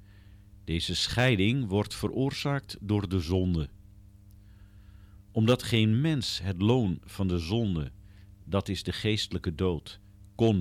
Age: 50-69